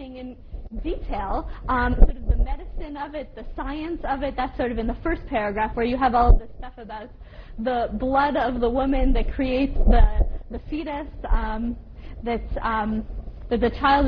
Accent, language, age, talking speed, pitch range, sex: American, English, 20-39, 185 wpm, 230-285 Hz, female